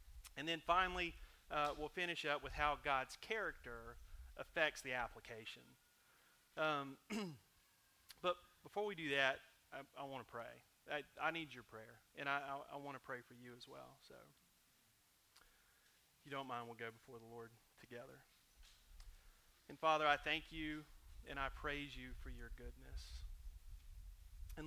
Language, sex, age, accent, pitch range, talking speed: English, male, 30-49, American, 120-145 Hz, 155 wpm